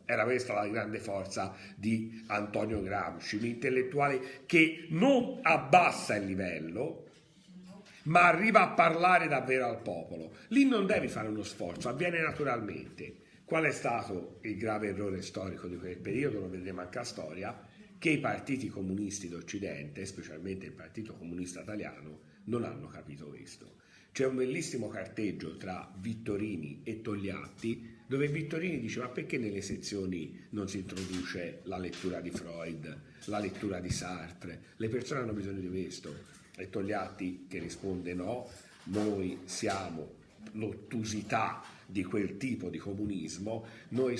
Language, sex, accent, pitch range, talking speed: Italian, male, native, 95-130 Hz, 145 wpm